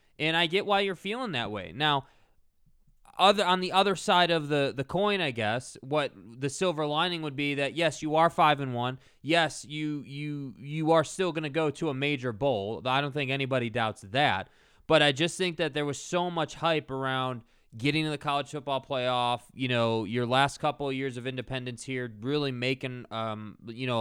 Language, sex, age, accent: English, male, 20-39, American